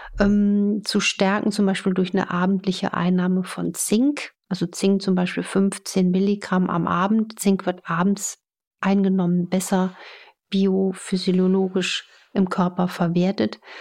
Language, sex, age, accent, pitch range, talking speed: German, female, 50-69, German, 185-215 Hz, 115 wpm